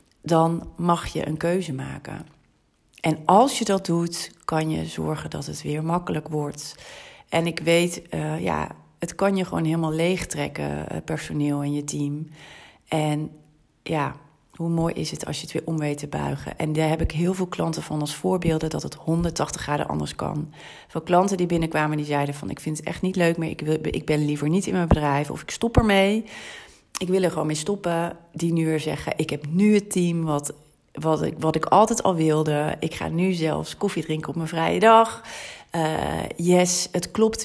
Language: Dutch